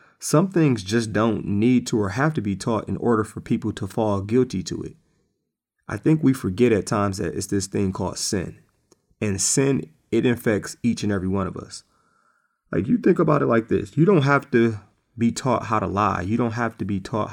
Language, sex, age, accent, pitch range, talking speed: English, male, 30-49, American, 100-125 Hz, 220 wpm